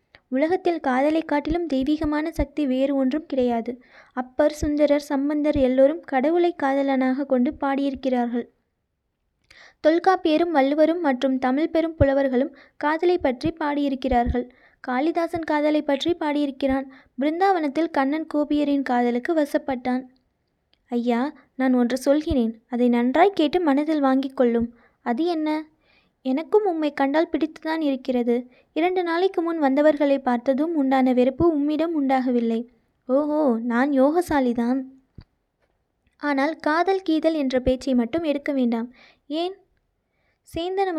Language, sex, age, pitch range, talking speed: Tamil, female, 20-39, 260-315 Hz, 105 wpm